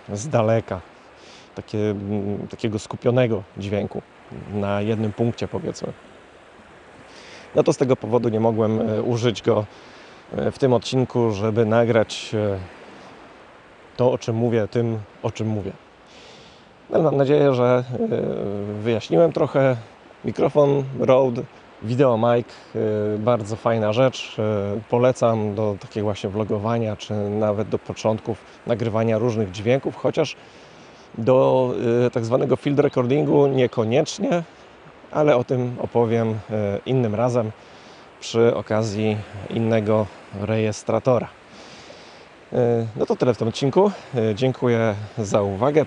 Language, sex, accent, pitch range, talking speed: Polish, male, native, 105-125 Hz, 110 wpm